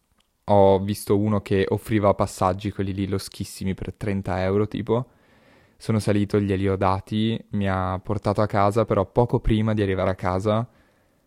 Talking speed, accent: 155 wpm, native